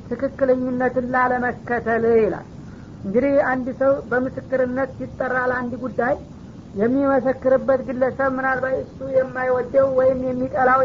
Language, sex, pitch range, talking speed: Amharic, female, 250-270 Hz, 100 wpm